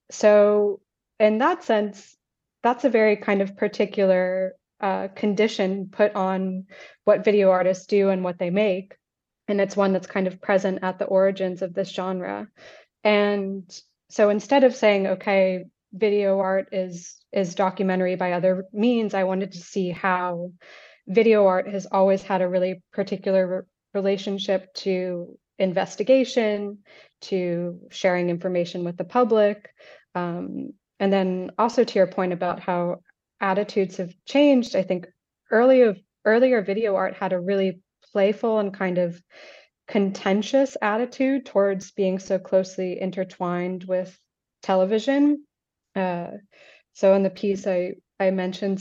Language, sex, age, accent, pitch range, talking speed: English, female, 20-39, American, 185-210 Hz, 140 wpm